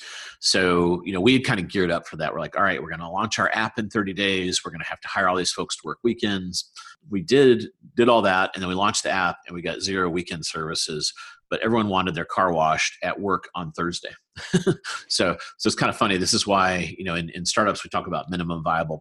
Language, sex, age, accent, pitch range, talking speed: English, male, 40-59, American, 85-105 Hz, 255 wpm